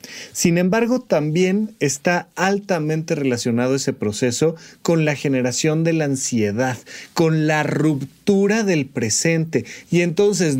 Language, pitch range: Spanish, 135-190 Hz